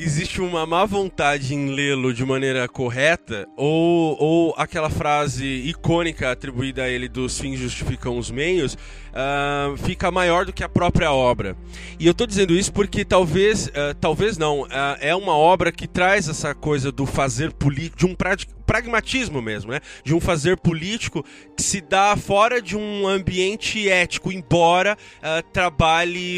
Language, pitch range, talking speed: Portuguese, 140-180 Hz, 165 wpm